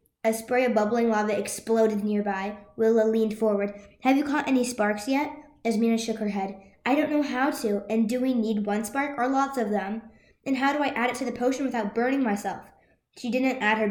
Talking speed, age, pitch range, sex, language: 220 wpm, 20-39, 210-255 Hz, female, English